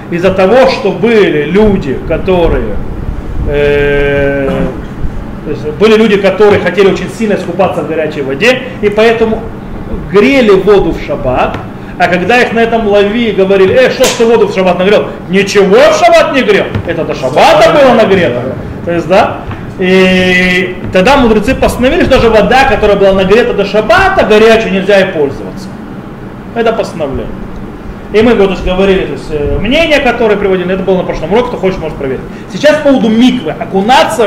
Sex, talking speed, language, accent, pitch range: male, 160 wpm, Russian, native, 175-230 Hz